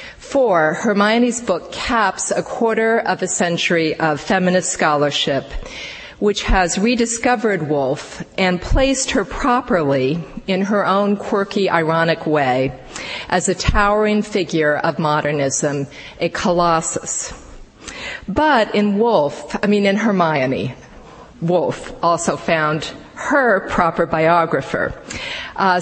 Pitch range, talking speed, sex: 165-210 Hz, 110 wpm, female